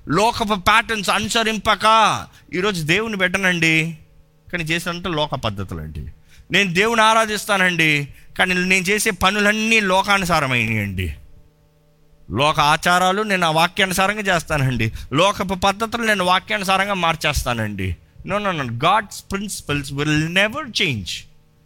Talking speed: 100 wpm